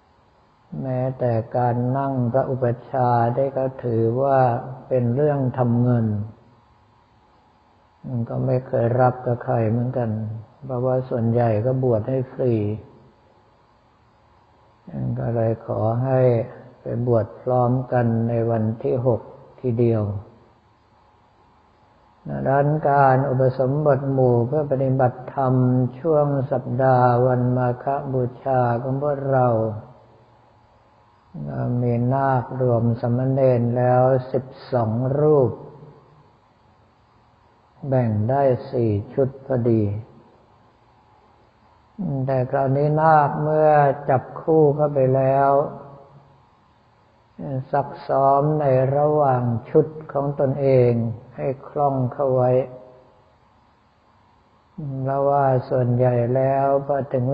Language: Thai